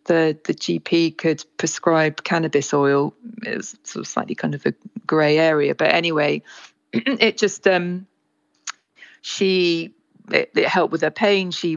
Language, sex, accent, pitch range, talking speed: English, female, British, 150-180 Hz, 155 wpm